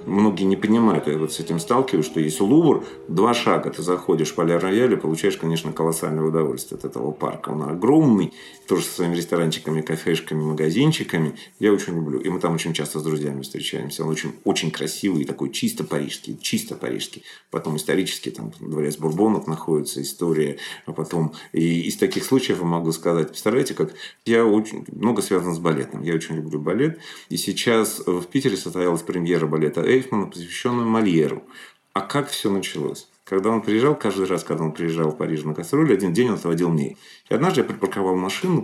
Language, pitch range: Russian, 80-105 Hz